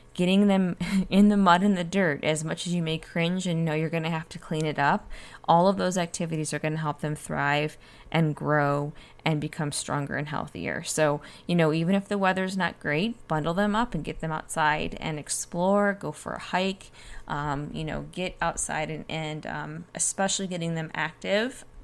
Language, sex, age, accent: English, female, 10-29, American